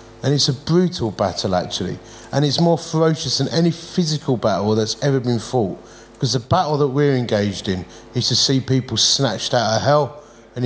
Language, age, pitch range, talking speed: English, 30-49, 115-160 Hz, 190 wpm